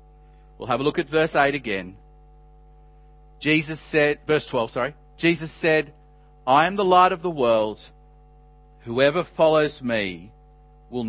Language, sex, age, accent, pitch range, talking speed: English, male, 40-59, Australian, 145-165 Hz, 140 wpm